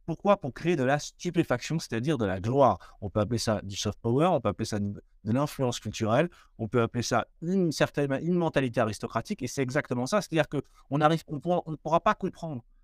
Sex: male